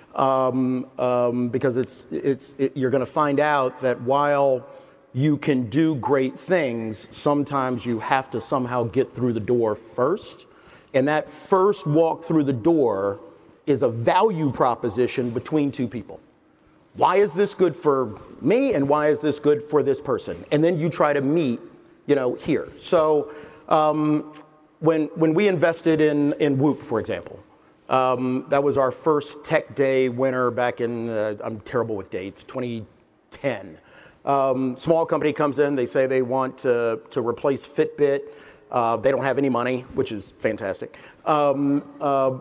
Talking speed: 160 wpm